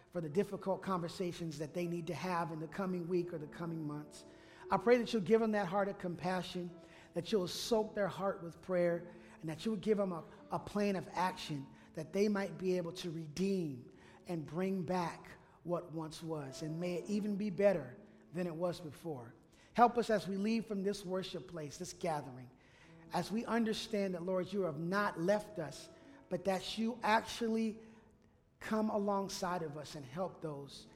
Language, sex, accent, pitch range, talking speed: English, male, American, 165-205 Hz, 190 wpm